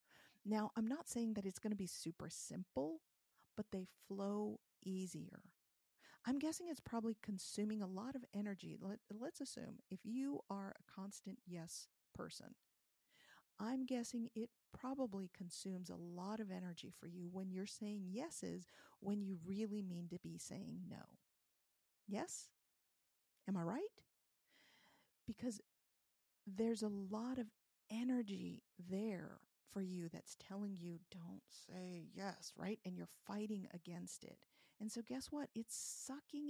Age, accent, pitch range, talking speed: 40-59, American, 190-245 Hz, 145 wpm